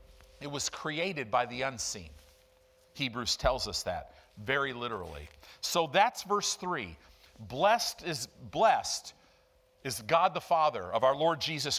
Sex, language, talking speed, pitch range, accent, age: male, English, 135 wpm, 125-190 Hz, American, 50-69